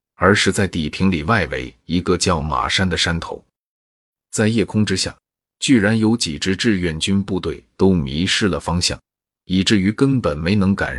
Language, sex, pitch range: Chinese, male, 85-110 Hz